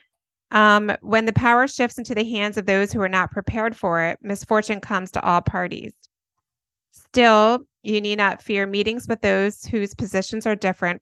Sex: female